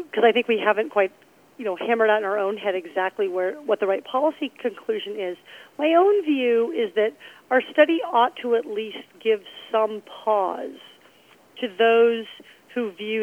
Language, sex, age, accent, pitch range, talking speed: English, female, 40-59, American, 200-265 Hz, 180 wpm